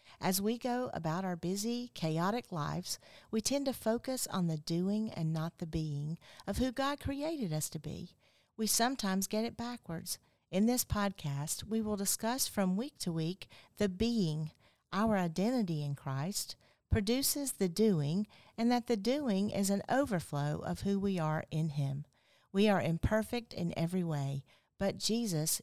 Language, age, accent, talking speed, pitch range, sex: English, 50-69, American, 165 wpm, 160-220 Hz, female